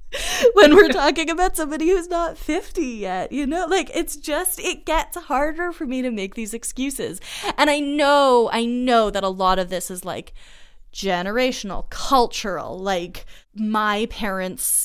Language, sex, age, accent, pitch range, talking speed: English, female, 20-39, American, 185-310 Hz, 160 wpm